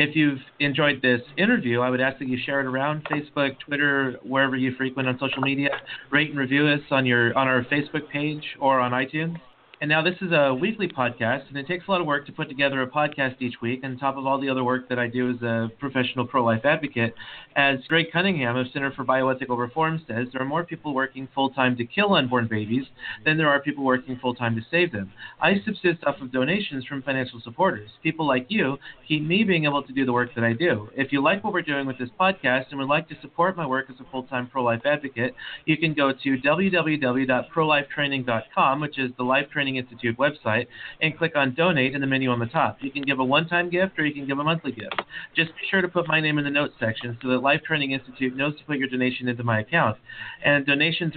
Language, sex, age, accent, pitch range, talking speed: English, male, 30-49, American, 125-150 Hz, 235 wpm